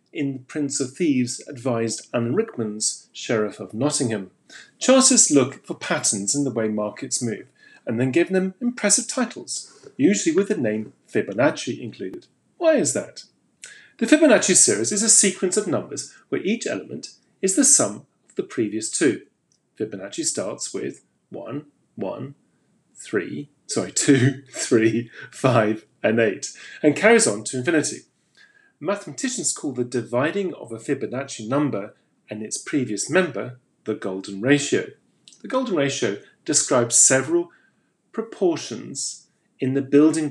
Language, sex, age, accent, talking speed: English, male, 40-59, British, 140 wpm